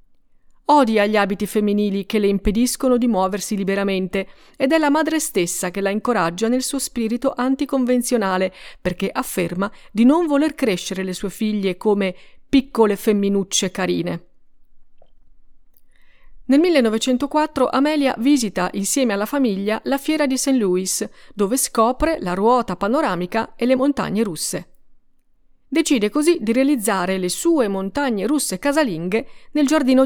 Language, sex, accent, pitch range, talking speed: Italian, female, native, 195-265 Hz, 135 wpm